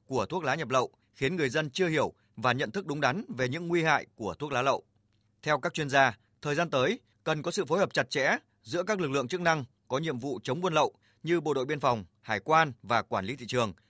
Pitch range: 115-160 Hz